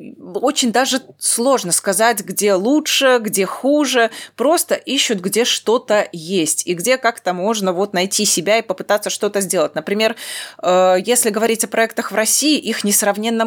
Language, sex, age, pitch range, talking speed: Russian, female, 20-39, 190-240 Hz, 145 wpm